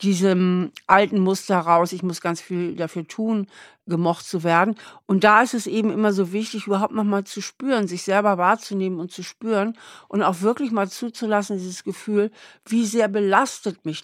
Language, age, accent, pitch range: German, 50-69, German, 180-220 Hz